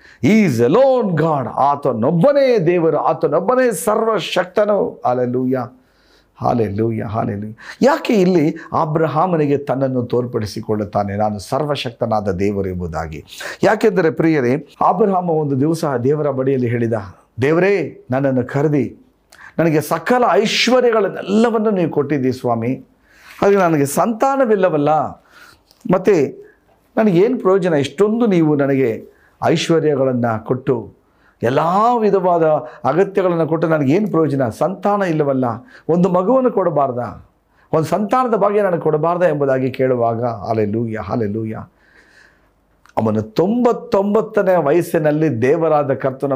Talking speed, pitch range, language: 100 wpm, 120-200 Hz, Kannada